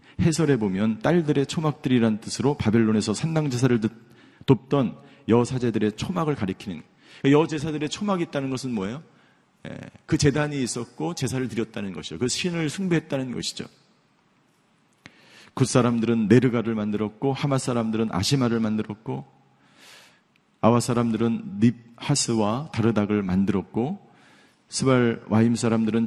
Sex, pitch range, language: male, 110-145 Hz, Korean